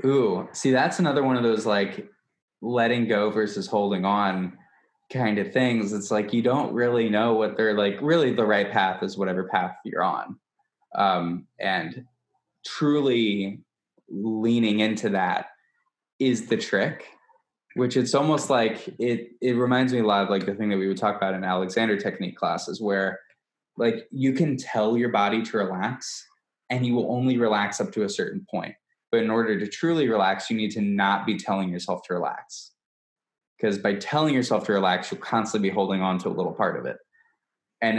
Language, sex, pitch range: English, male, 100-125 Hz